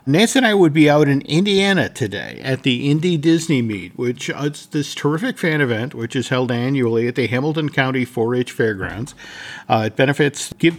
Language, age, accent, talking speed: English, 50-69, American, 195 wpm